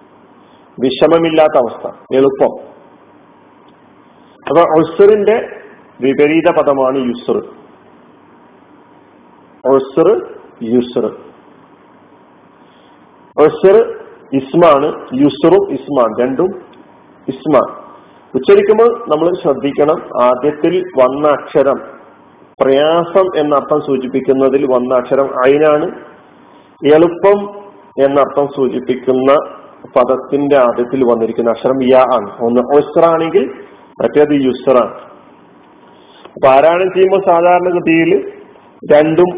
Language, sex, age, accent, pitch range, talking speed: Malayalam, male, 40-59, native, 135-185 Hz, 60 wpm